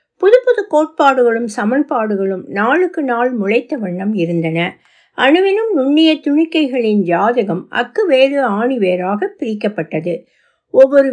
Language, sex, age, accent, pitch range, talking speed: Tamil, female, 60-79, native, 210-315 Hz, 80 wpm